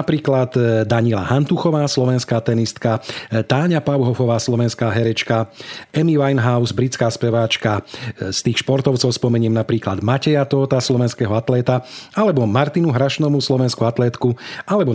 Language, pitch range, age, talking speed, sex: Slovak, 115-135 Hz, 40-59, 110 wpm, male